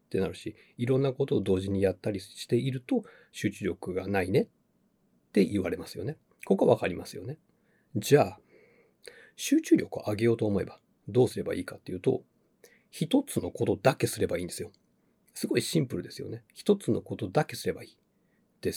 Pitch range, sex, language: 105-140 Hz, male, Japanese